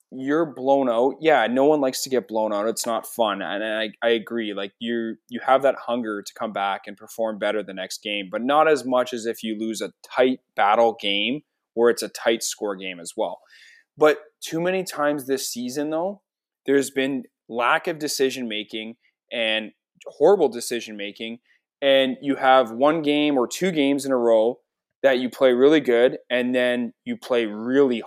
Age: 20-39